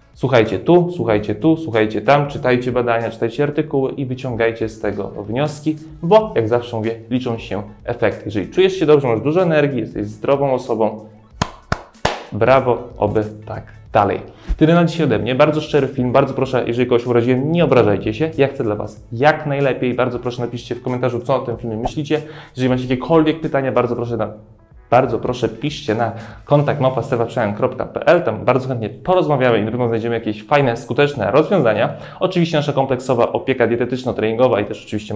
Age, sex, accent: 20-39, male, native